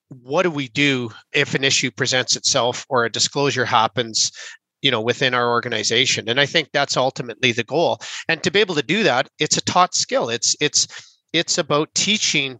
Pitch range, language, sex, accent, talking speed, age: 130-160 Hz, English, male, American, 195 wpm, 40-59